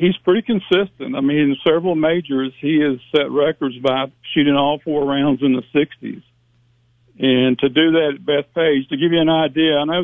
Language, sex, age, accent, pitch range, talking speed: English, male, 60-79, American, 130-155 Hz, 195 wpm